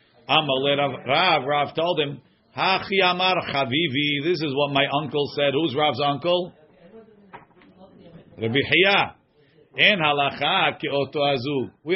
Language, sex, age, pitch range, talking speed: English, male, 50-69, 140-175 Hz, 100 wpm